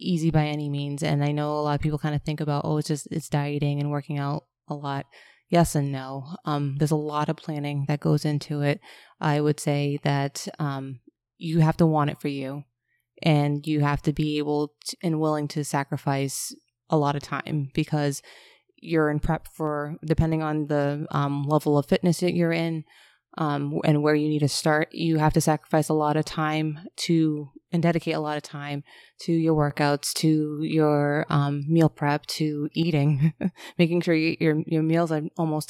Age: 20-39